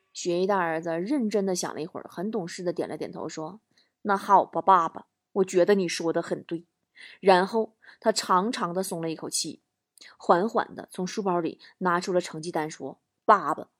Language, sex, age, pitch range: Chinese, female, 20-39, 180-230 Hz